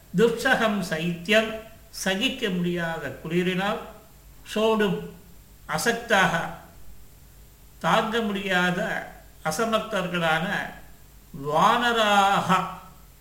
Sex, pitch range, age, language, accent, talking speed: male, 165-220 Hz, 50-69, Tamil, native, 50 wpm